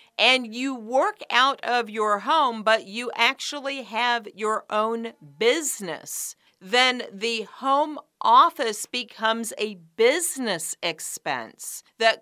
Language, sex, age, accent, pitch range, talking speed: English, female, 50-69, American, 185-240 Hz, 115 wpm